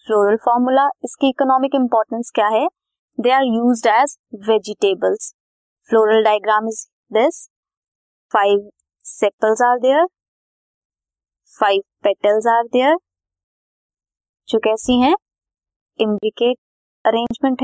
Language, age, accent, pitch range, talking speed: Hindi, 20-39, native, 210-275 Hz, 85 wpm